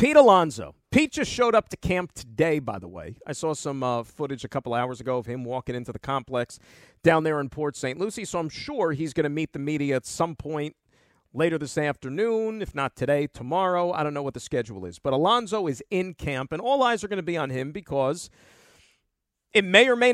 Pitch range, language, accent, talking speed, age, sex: 125-165 Hz, English, American, 230 wpm, 40-59, male